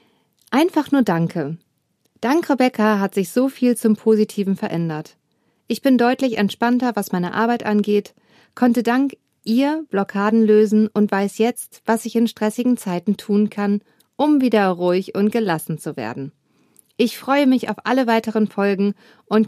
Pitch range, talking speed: 190-240 Hz, 155 wpm